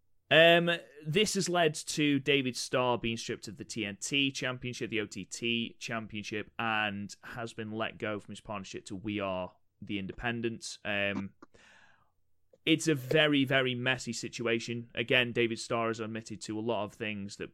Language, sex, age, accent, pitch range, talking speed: English, male, 30-49, British, 100-120 Hz, 155 wpm